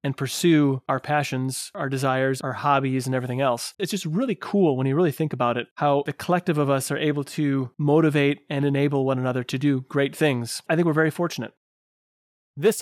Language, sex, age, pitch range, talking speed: English, male, 30-49, 135-165 Hz, 205 wpm